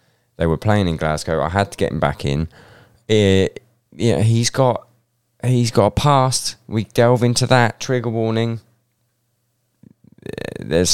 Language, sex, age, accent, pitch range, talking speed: English, male, 20-39, British, 85-120 Hz, 155 wpm